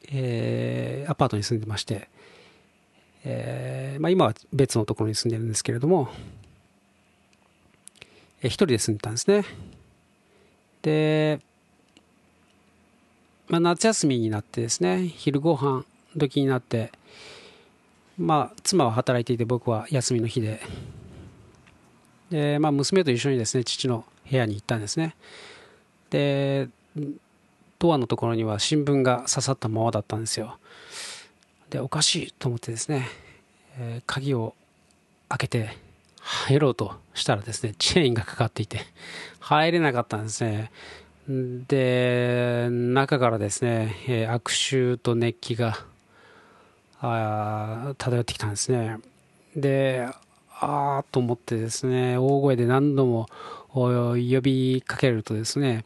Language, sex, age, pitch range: Japanese, male, 40-59, 115-140 Hz